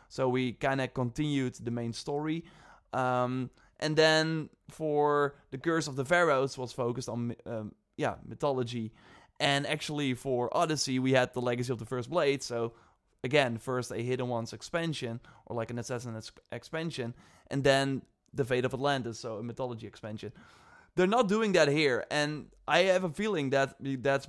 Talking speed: 170 wpm